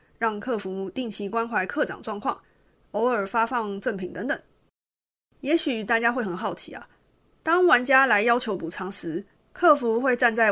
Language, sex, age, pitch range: Chinese, female, 20-39, 200-245 Hz